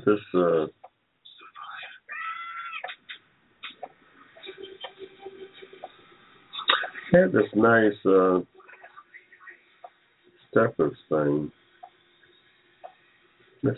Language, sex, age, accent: English, male, 60-79, American